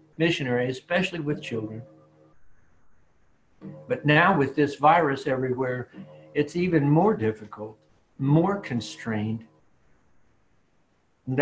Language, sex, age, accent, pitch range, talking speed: English, male, 60-79, American, 120-155 Hz, 90 wpm